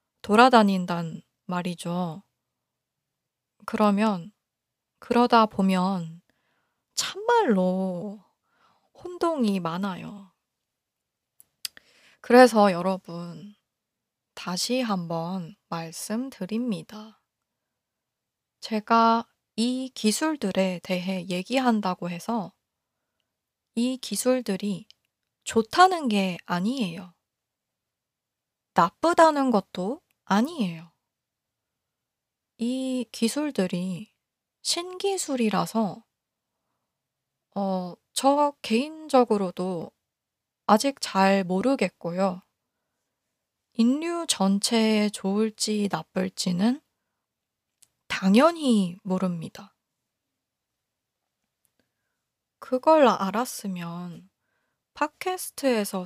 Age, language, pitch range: 20-39, Korean, 185-245 Hz